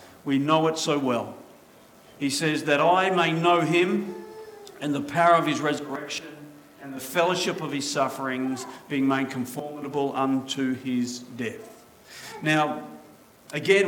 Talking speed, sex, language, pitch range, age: 140 wpm, male, English, 160-200 Hz, 50-69